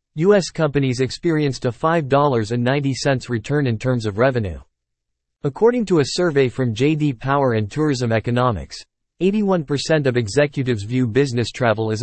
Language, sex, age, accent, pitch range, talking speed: English, male, 40-59, American, 115-150 Hz, 135 wpm